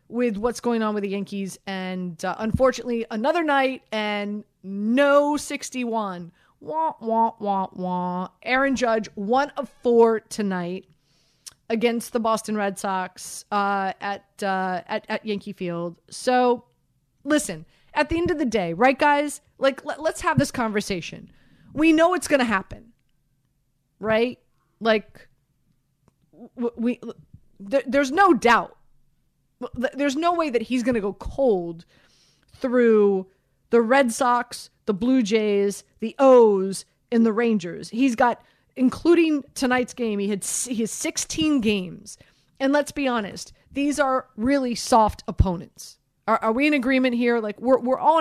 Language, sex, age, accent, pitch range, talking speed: English, female, 30-49, American, 200-270 Hz, 145 wpm